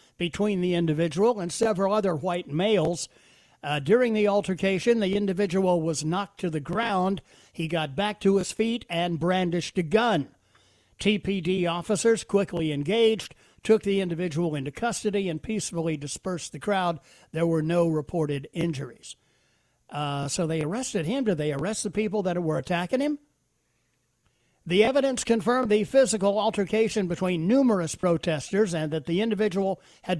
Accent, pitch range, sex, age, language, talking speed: American, 165-210 Hz, male, 60-79, English, 150 wpm